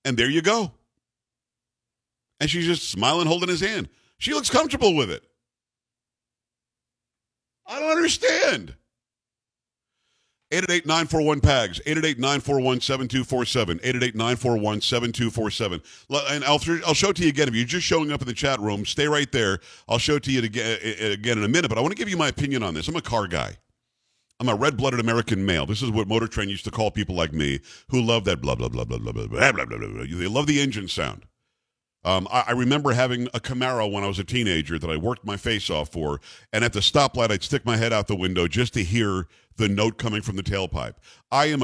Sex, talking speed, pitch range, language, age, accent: male, 195 wpm, 105-135 Hz, English, 50-69, American